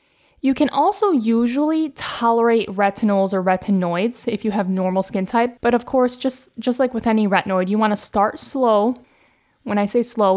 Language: English